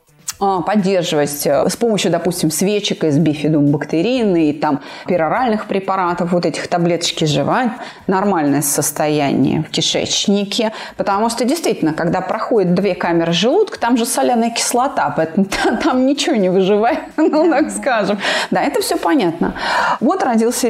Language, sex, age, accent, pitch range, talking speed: Russian, female, 30-49, native, 170-245 Hz, 135 wpm